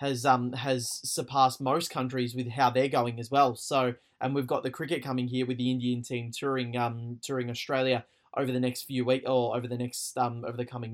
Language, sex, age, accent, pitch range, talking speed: English, male, 20-39, Australian, 125-140 Hz, 225 wpm